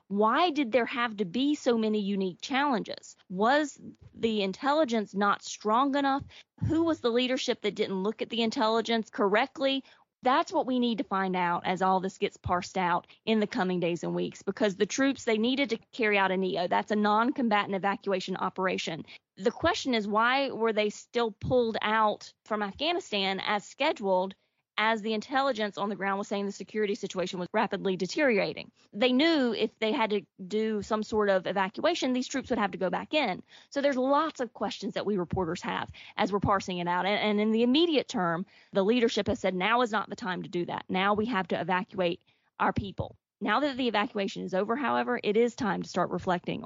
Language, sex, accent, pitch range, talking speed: English, female, American, 195-245 Hz, 205 wpm